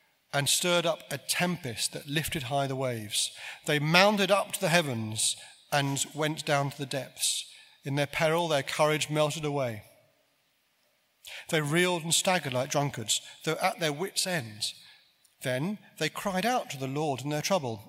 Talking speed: 170 wpm